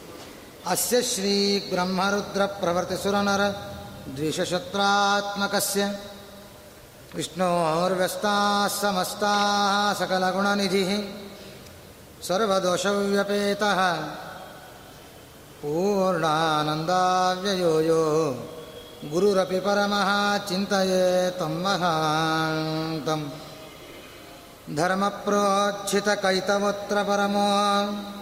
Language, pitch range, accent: Kannada, 180-200 Hz, native